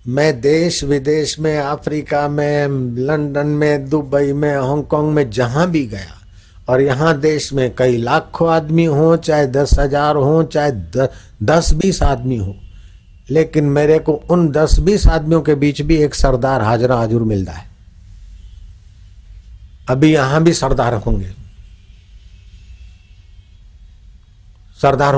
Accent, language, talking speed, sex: native, Hindi, 130 wpm, male